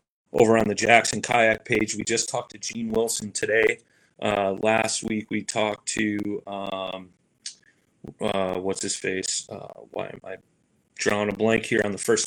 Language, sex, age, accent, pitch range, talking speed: English, male, 30-49, American, 105-125 Hz, 165 wpm